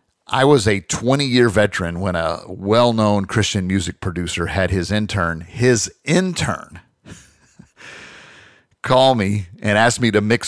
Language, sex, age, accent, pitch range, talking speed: English, male, 50-69, American, 90-115 Hz, 130 wpm